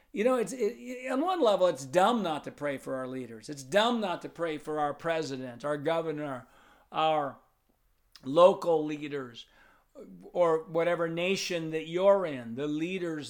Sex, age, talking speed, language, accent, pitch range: male, 50-69, 160 wpm, English, American, 150-180 Hz